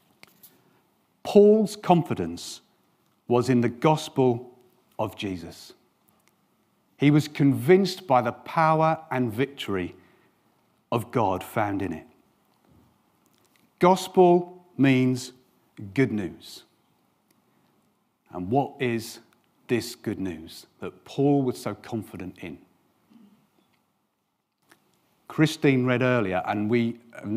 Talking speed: 95 wpm